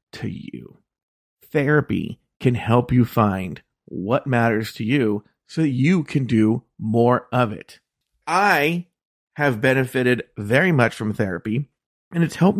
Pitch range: 115-155 Hz